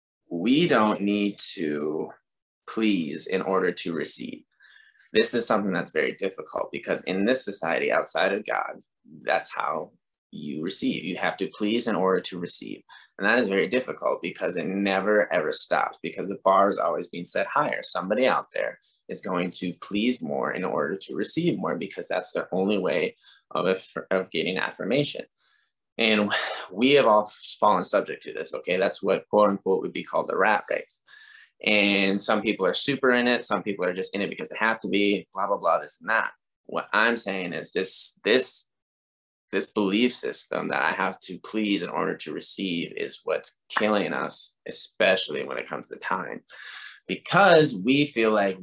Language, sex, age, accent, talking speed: English, male, 20-39, American, 185 wpm